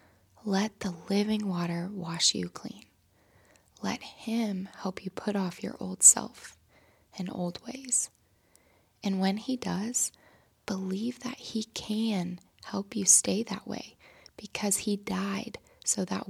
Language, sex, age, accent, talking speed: English, female, 20-39, American, 135 wpm